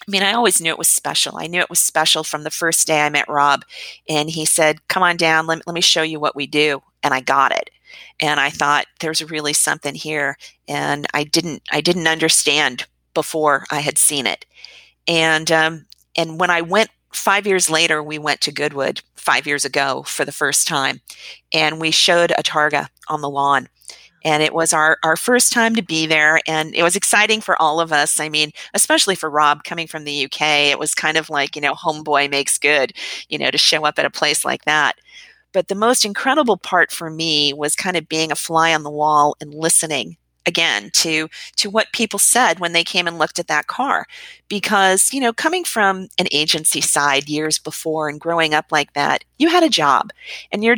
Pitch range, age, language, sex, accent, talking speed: 150-180 Hz, 40-59, English, female, American, 220 wpm